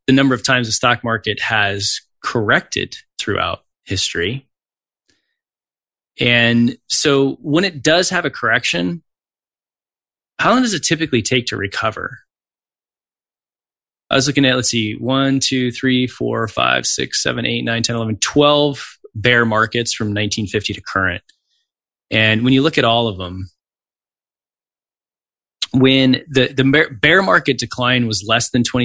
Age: 20-39